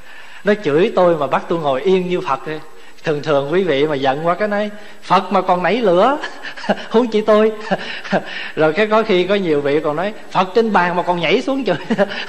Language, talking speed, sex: Vietnamese, 215 wpm, male